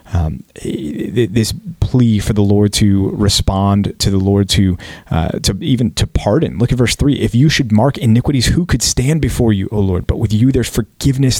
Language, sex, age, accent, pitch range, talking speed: English, male, 30-49, American, 100-120 Hz, 200 wpm